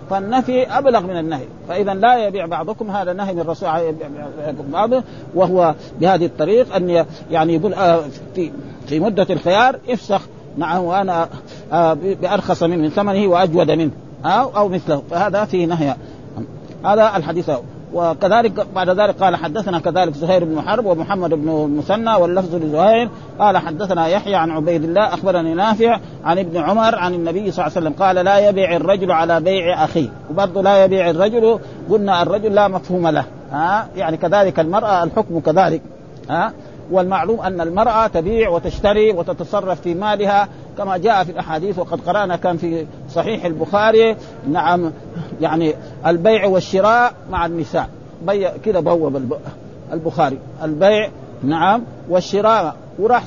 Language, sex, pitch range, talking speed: Arabic, male, 160-205 Hz, 140 wpm